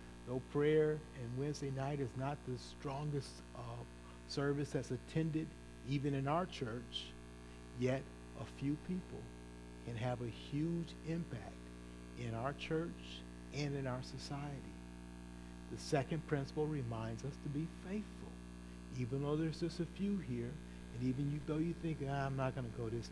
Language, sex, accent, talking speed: English, male, American, 155 wpm